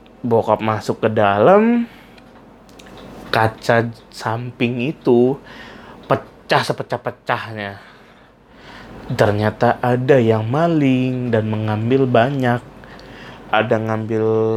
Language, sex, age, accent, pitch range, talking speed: Indonesian, male, 30-49, native, 110-135 Hz, 75 wpm